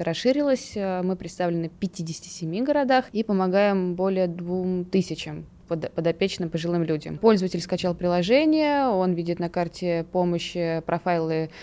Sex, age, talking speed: female, 20-39, 120 wpm